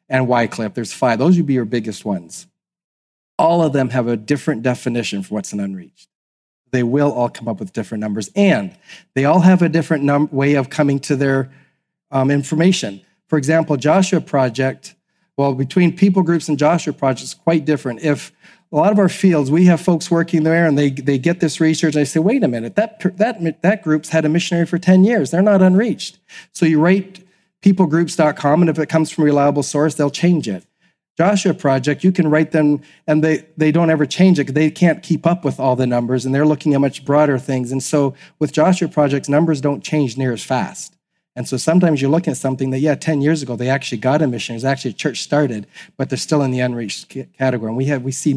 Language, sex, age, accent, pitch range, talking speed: English, male, 40-59, American, 130-165 Hz, 225 wpm